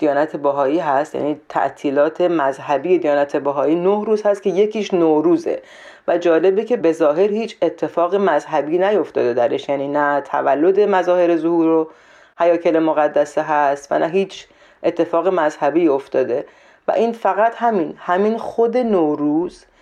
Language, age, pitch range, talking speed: Persian, 40-59, 150-195 Hz, 135 wpm